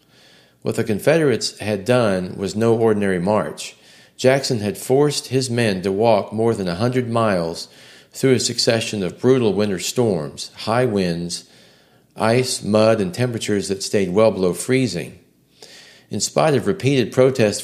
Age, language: 40-59, English